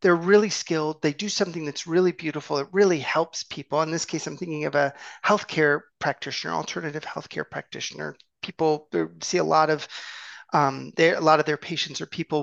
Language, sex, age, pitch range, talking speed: English, male, 30-49, 150-200 Hz, 185 wpm